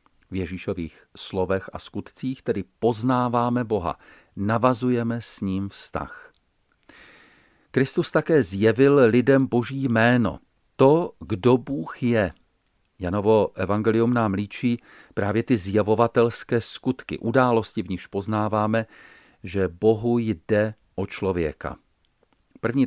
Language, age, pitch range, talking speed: Czech, 40-59, 95-120 Hz, 105 wpm